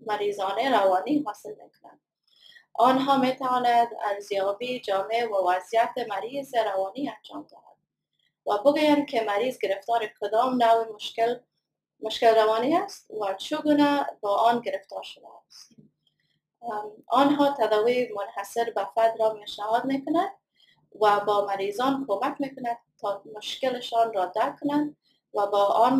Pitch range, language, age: 205-255 Hz, Persian, 20-39